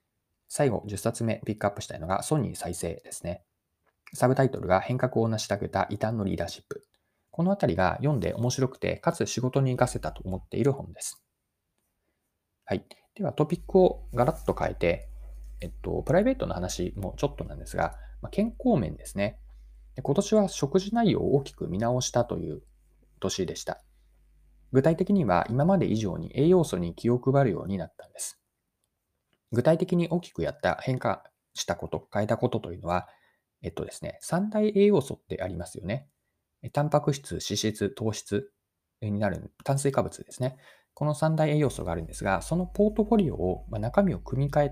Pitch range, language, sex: 95-155 Hz, Japanese, male